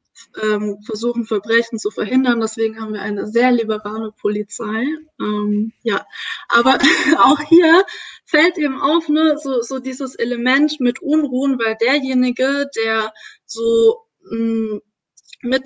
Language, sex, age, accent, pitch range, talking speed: German, female, 20-39, German, 225-270 Hz, 115 wpm